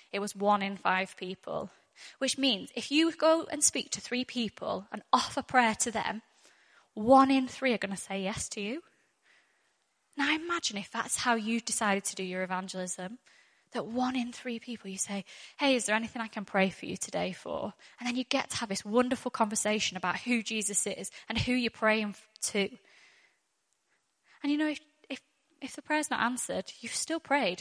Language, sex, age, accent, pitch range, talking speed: English, female, 10-29, British, 200-265 Hz, 200 wpm